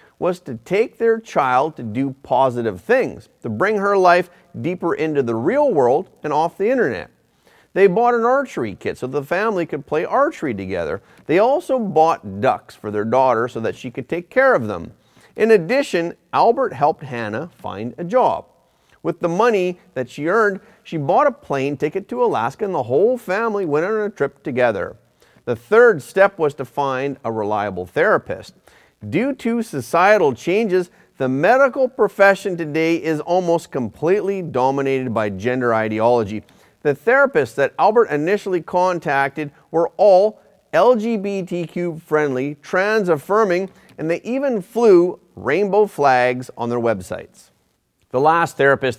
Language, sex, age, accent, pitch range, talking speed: English, male, 40-59, American, 130-205 Hz, 155 wpm